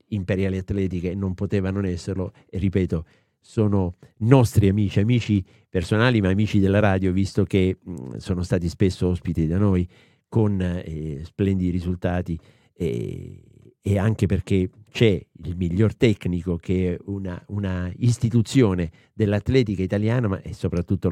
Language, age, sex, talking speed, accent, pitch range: Italian, 50-69, male, 135 wpm, native, 90-110 Hz